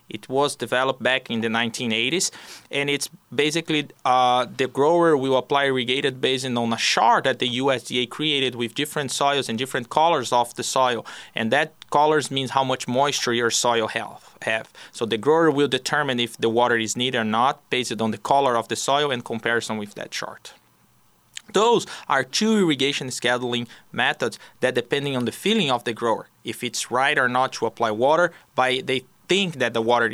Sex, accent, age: male, Brazilian, 20-39